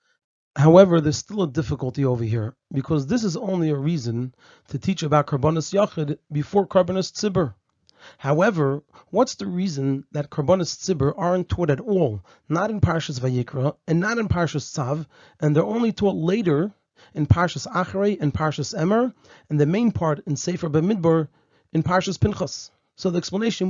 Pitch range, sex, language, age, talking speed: 145-190 Hz, male, English, 30-49, 165 wpm